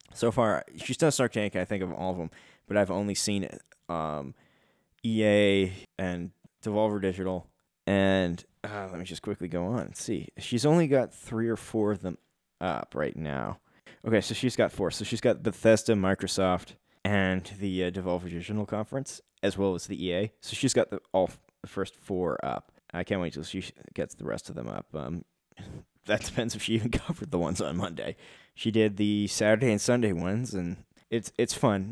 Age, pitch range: 10-29, 90-110 Hz